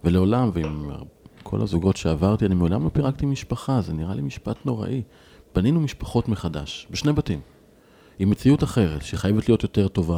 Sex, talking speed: male, 160 wpm